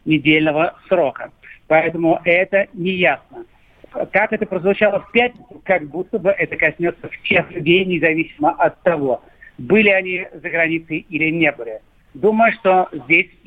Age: 50-69